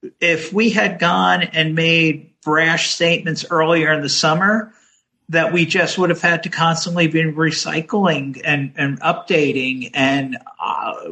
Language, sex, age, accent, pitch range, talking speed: English, male, 50-69, American, 145-175 Hz, 145 wpm